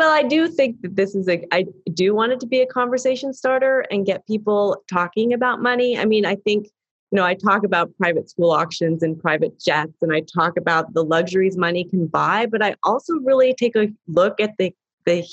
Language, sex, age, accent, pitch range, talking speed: English, female, 30-49, American, 175-240 Hz, 225 wpm